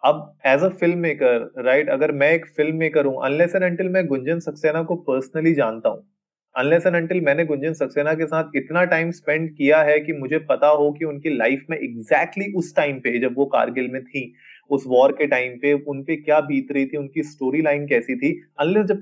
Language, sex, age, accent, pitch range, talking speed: Hindi, male, 30-49, native, 130-165 Hz, 175 wpm